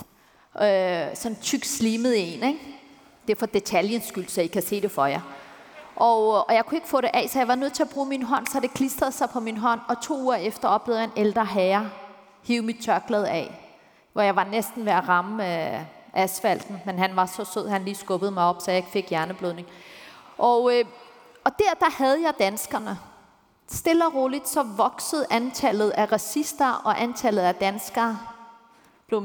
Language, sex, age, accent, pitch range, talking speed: Danish, female, 30-49, native, 200-245 Hz, 200 wpm